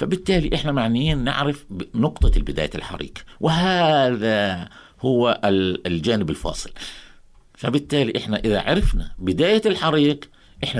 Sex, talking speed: male, 100 wpm